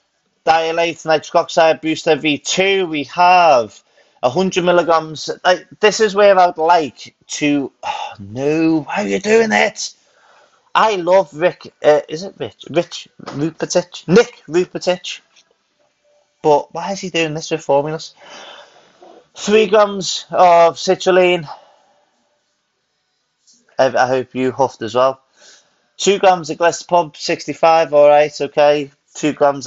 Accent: British